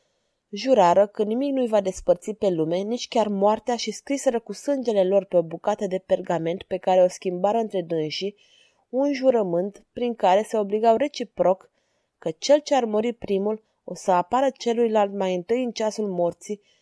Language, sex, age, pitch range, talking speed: Romanian, female, 20-39, 190-230 Hz, 175 wpm